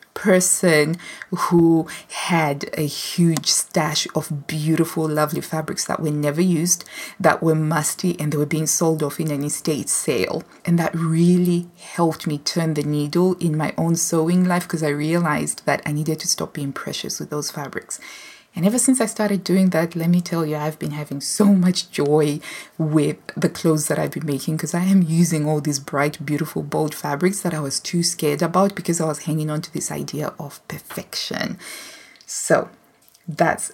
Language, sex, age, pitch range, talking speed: English, female, 20-39, 155-195 Hz, 185 wpm